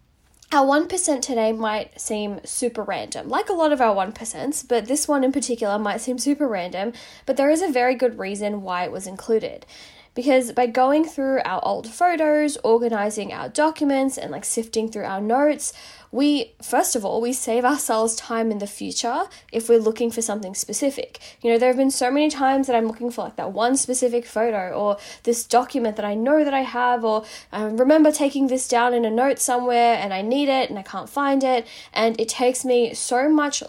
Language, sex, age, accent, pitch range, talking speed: English, female, 10-29, Australian, 215-270 Hz, 210 wpm